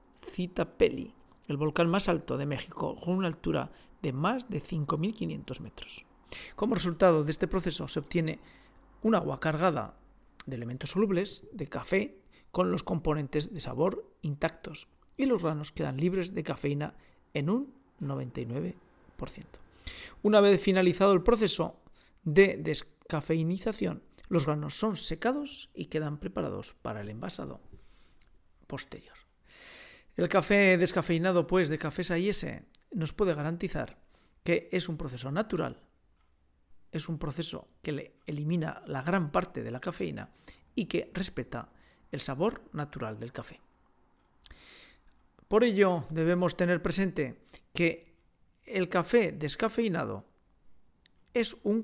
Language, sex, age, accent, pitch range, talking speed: Spanish, male, 40-59, Spanish, 140-185 Hz, 125 wpm